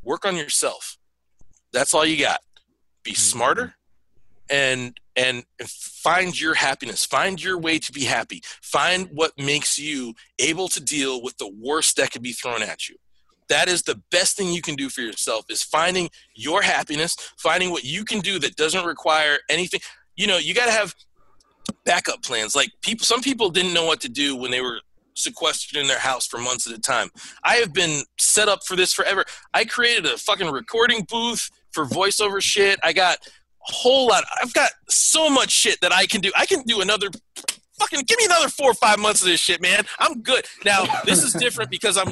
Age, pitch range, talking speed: 40-59, 145-210 Hz, 205 wpm